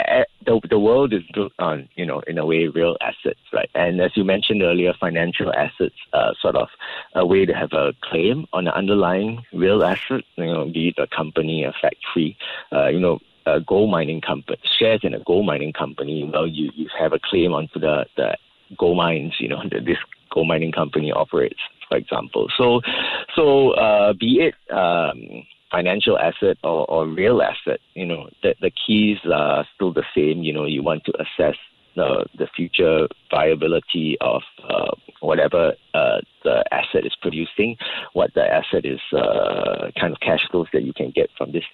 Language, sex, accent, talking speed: English, male, Malaysian, 190 wpm